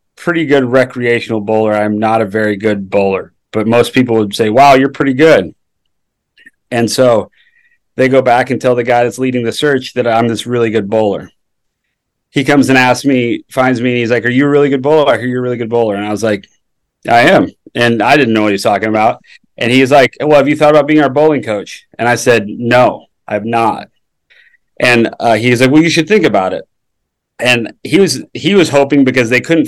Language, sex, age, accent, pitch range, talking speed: English, male, 30-49, American, 115-135 Hz, 225 wpm